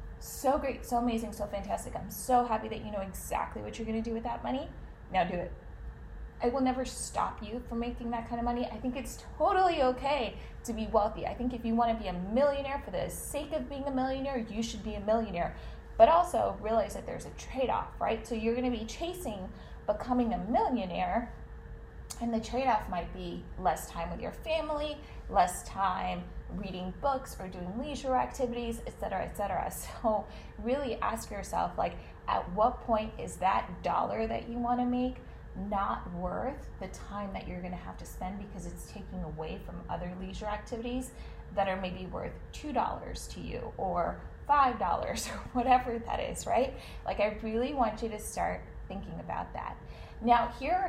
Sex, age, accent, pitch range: female, 20-39, American, 205-255 Hz